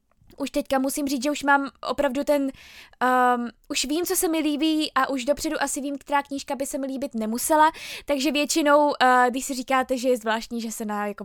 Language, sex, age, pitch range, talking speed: Czech, female, 20-39, 250-285 Hz, 220 wpm